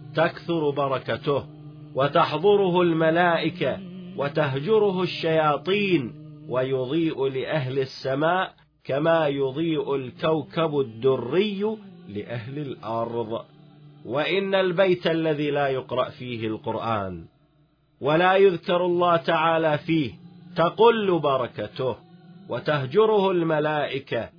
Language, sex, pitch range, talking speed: Arabic, male, 145-180 Hz, 75 wpm